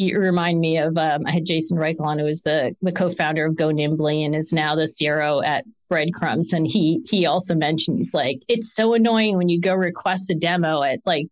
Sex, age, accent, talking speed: female, 40-59, American, 230 wpm